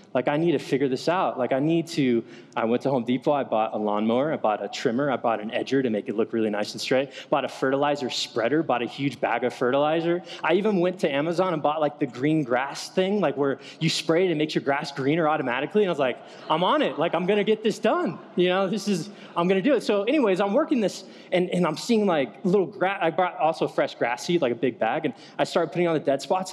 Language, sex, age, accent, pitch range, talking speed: English, male, 20-39, American, 130-185 Hz, 280 wpm